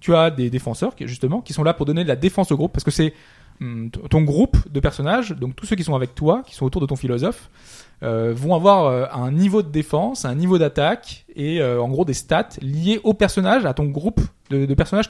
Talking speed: 240 wpm